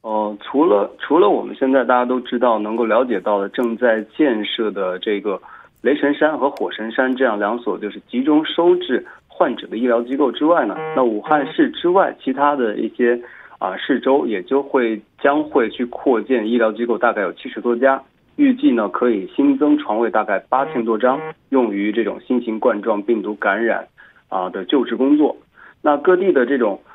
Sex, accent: male, Chinese